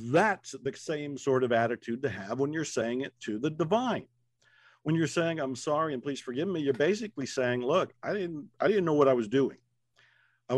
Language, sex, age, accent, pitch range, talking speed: English, male, 50-69, American, 125-170 Hz, 210 wpm